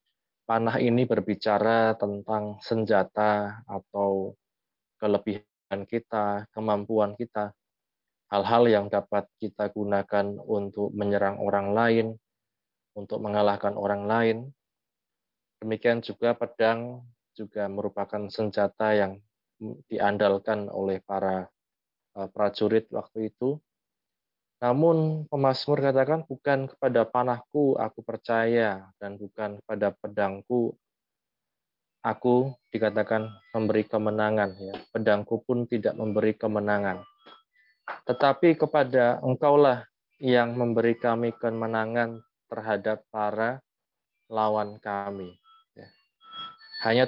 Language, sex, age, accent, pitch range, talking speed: Indonesian, male, 20-39, native, 105-120 Hz, 90 wpm